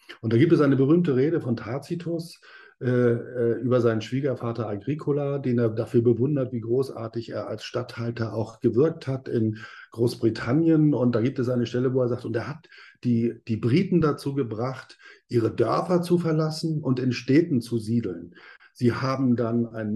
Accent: German